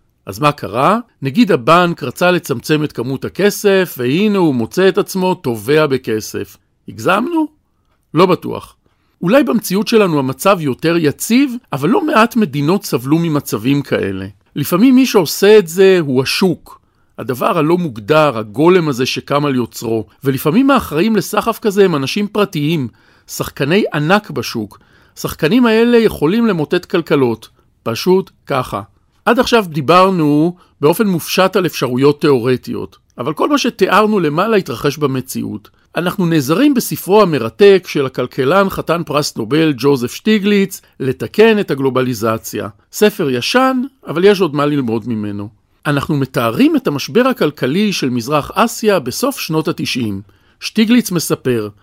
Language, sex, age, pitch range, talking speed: Hebrew, male, 50-69, 130-200 Hz, 135 wpm